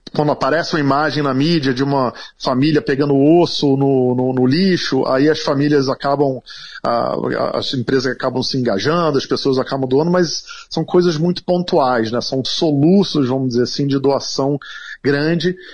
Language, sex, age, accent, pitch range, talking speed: Portuguese, male, 40-59, Brazilian, 135-175 Hz, 165 wpm